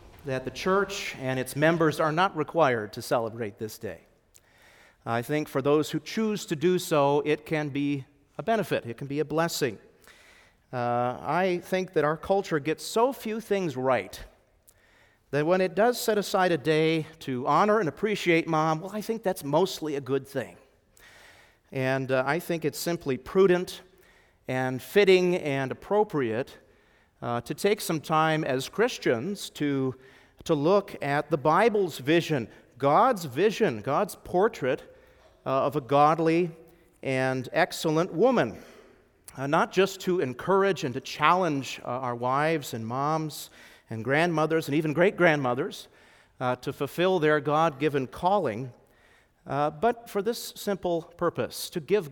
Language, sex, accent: English, male, American